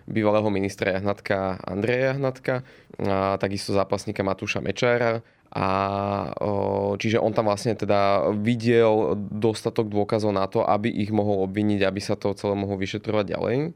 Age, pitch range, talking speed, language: 20-39, 100-120 Hz, 140 wpm, Slovak